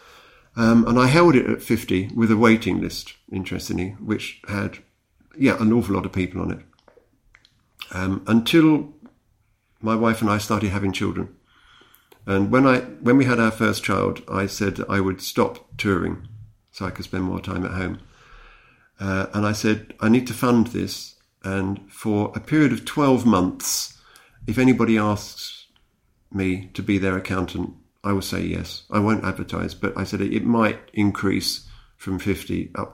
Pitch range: 95-115 Hz